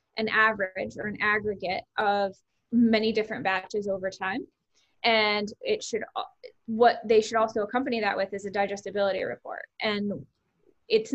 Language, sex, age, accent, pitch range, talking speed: English, female, 10-29, American, 200-225 Hz, 145 wpm